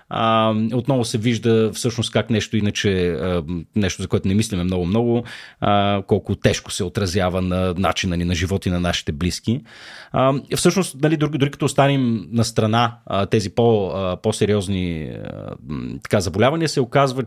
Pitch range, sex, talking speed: 95-125 Hz, male, 135 wpm